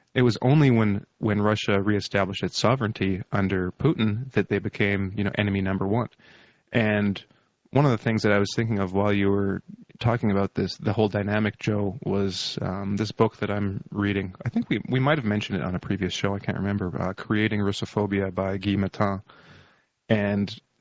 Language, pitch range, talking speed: English, 100-110 Hz, 195 wpm